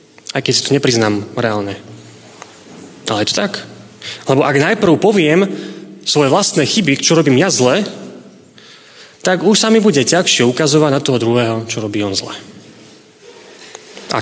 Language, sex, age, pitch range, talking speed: Slovak, male, 20-39, 120-160 Hz, 150 wpm